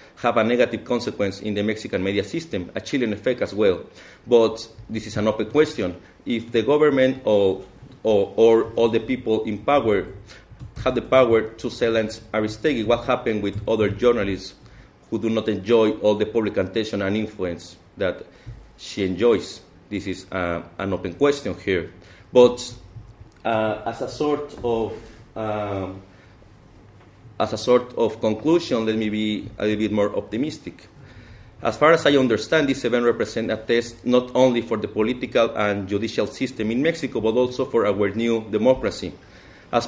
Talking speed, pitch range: 165 wpm, 105-120 Hz